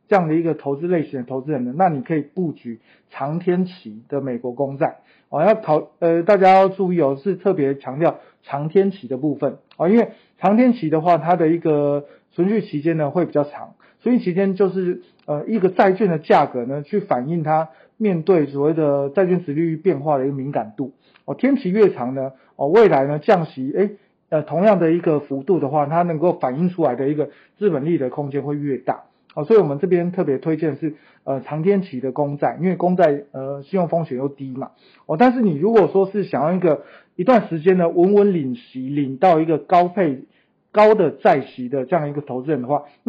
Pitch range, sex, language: 145-190 Hz, male, Chinese